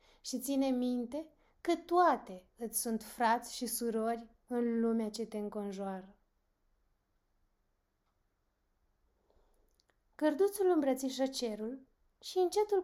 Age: 20-39